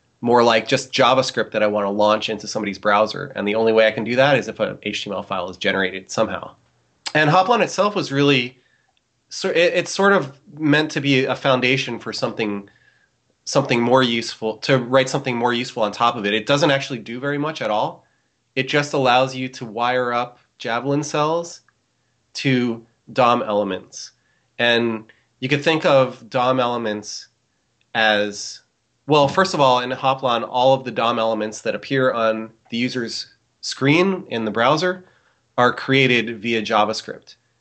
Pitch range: 110-135 Hz